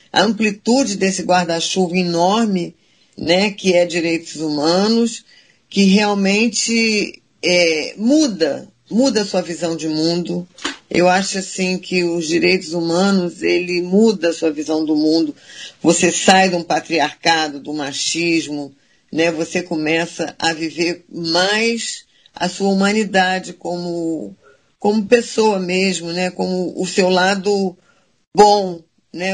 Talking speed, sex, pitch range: 125 wpm, female, 165-190 Hz